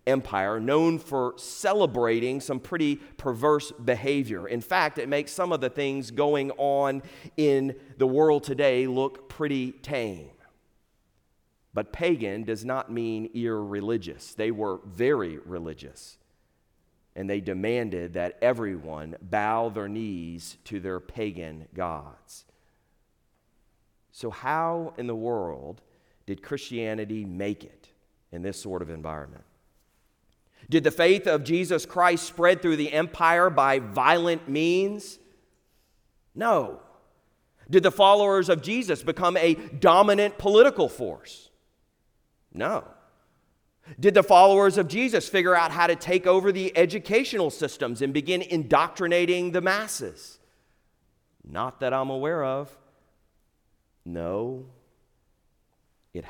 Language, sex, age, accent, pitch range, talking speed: English, male, 40-59, American, 105-165 Hz, 120 wpm